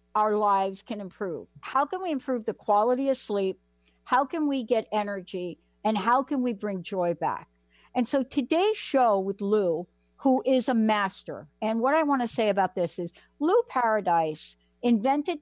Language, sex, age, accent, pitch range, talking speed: English, female, 60-79, American, 195-265 Hz, 175 wpm